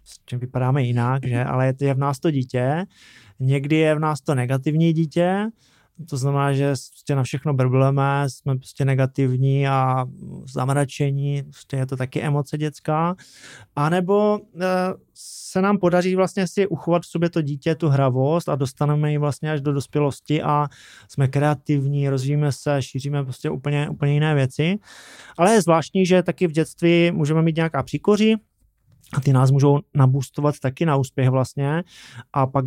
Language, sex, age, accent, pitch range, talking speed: Czech, male, 20-39, native, 135-155 Hz, 160 wpm